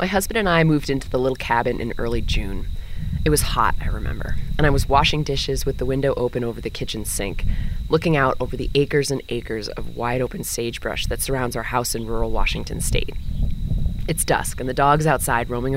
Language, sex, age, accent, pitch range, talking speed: English, female, 20-39, American, 110-160 Hz, 215 wpm